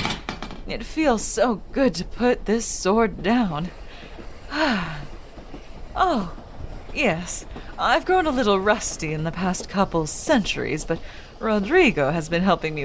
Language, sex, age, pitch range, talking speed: English, female, 30-49, 190-290 Hz, 125 wpm